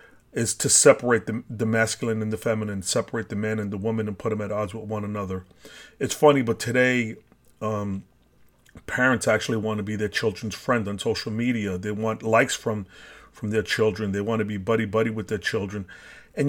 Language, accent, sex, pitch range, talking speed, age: English, American, male, 110-125 Hz, 200 wpm, 40-59